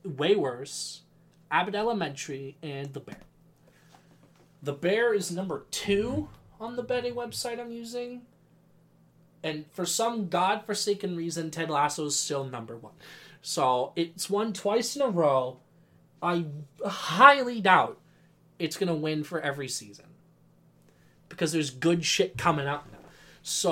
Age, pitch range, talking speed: 20-39, 140-175 Hz, 135 wpm